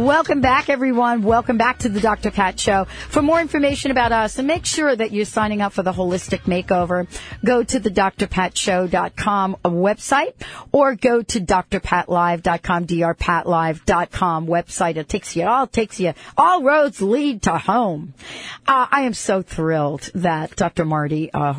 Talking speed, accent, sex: 160 wpm, American, female